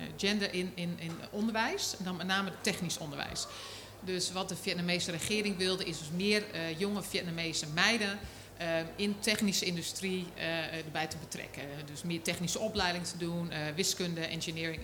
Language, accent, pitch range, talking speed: Dutch, Dutch, 165-205 Hz, 165 wpm